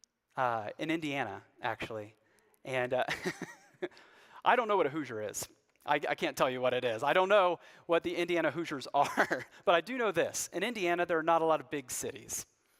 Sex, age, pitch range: male, 30-49, 125-175 Hz